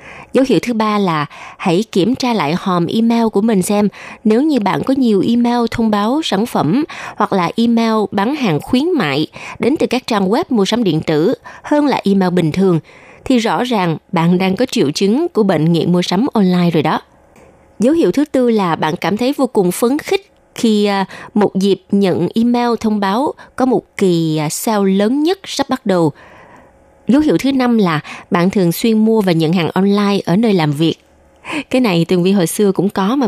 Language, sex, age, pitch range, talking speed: Vietnamese, female, 20-39, 175-240 Hz, 205 wpm